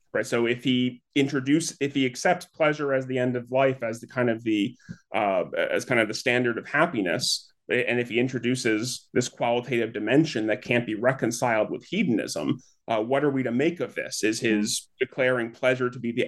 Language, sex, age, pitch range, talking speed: English, male, 30-49, 115-135 Hz, 205 wpm